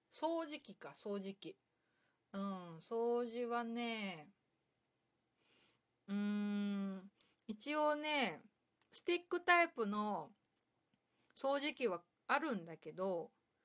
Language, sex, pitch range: Japanese, female, 190-285 Hz